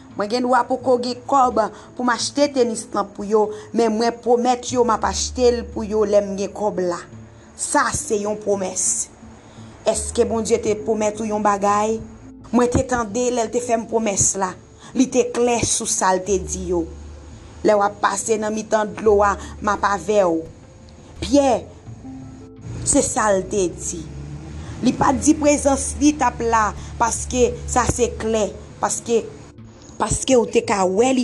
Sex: female